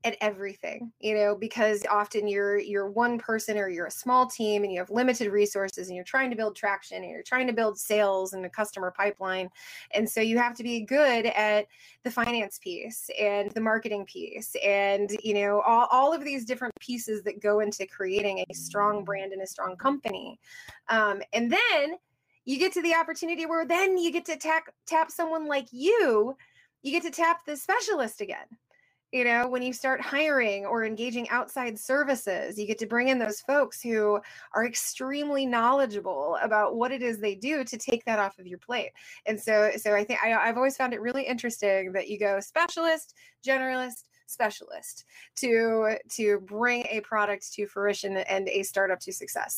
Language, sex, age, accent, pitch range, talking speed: English, female, 20-39, American, 205-265 Hz, 190 wpm